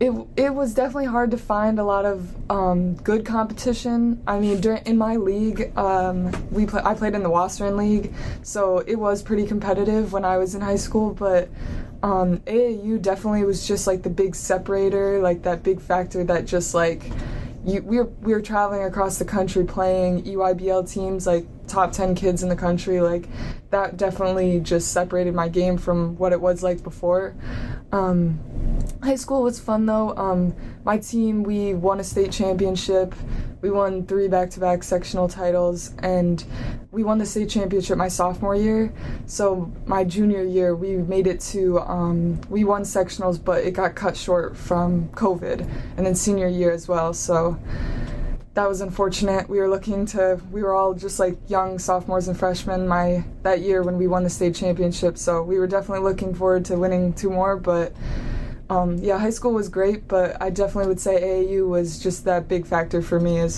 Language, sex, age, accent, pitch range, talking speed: English, female, 20-39, American, 180-200 Hz, 190 wpm